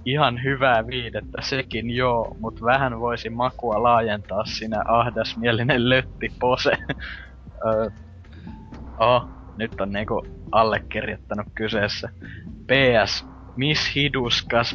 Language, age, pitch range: Finnish, 20-39, 110-125 Hz